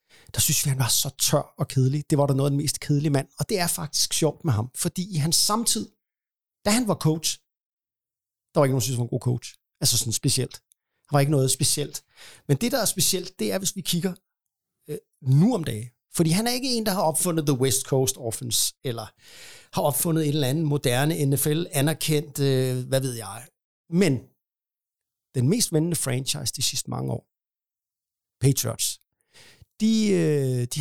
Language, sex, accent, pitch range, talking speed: Danish, male, native, 130-170 Hz, 200 wpm